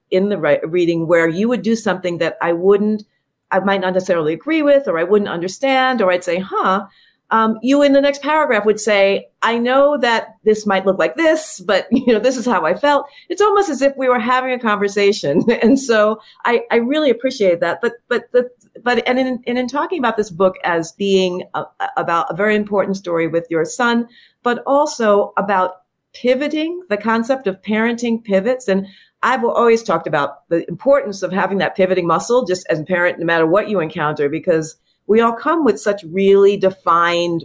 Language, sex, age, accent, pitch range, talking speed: English, female, 50-69, American, 180-245 Hz, 200 wpm